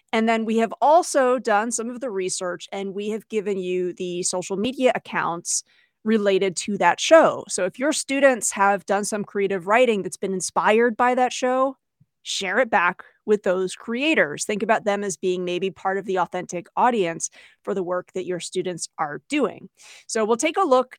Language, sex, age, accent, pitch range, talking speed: English, female, 30-49, American, 195-240 Hz, 195 wpm